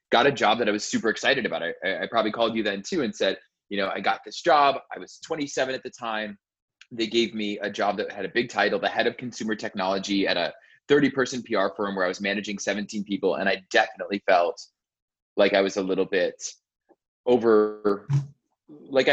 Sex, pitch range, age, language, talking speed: male, 100-120 Hz, 20-39, English, 215 wpm